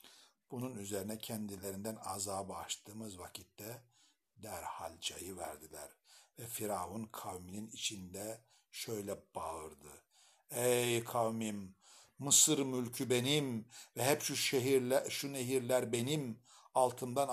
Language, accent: Turkish, native